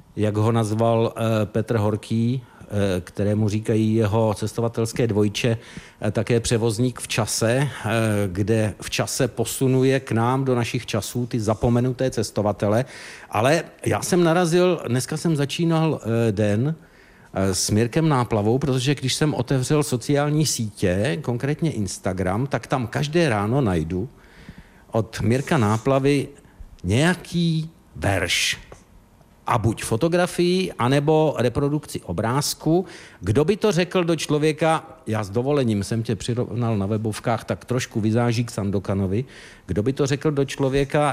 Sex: male